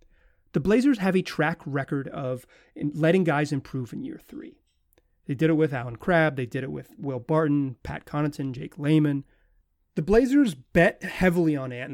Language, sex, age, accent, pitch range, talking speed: English, male, 30-49, American, 145-195 Hz, 180 wpm